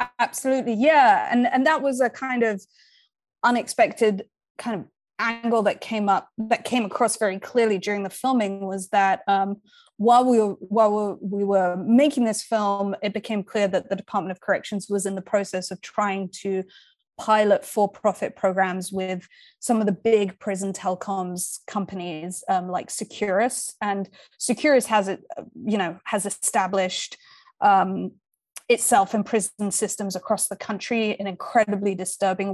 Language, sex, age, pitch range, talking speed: English, female, 20-39, 195-230 Hz, 155 wpm